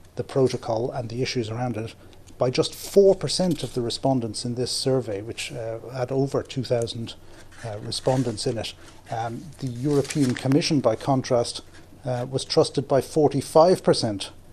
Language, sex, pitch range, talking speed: English, male, 110-130 Hz, 155 wpm